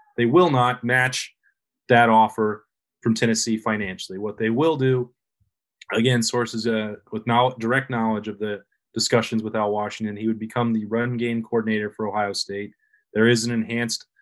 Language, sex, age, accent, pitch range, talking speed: English, male, 30-49, American, 110-125 Hz, 170 wpm